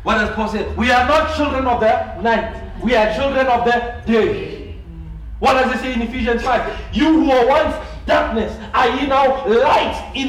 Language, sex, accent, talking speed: English, male, South African, 190 wpm